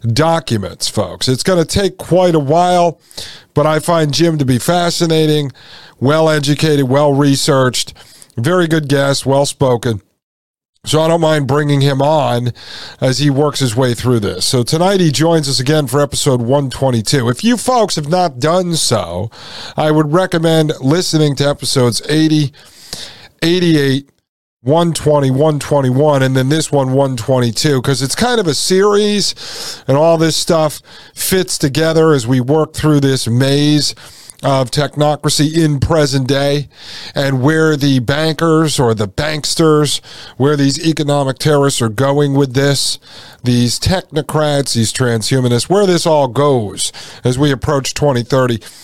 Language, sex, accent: English, male, American